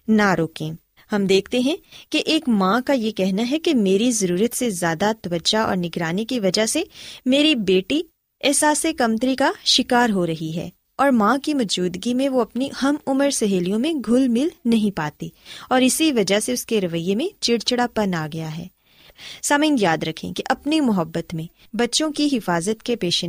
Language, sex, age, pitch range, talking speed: Urdu, female, 20-39, 180-260 Hz, 185 wpm